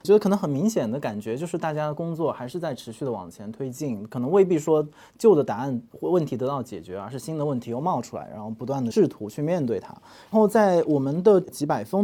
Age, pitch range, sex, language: 20-39, 125-180 Hz, male, Chinese